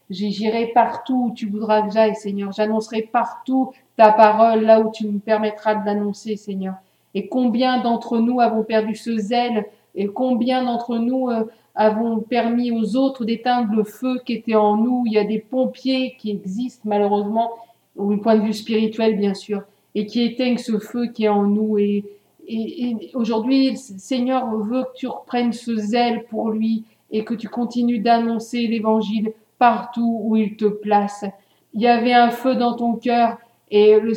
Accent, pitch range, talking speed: French, 215-240 Hz, 180 wpm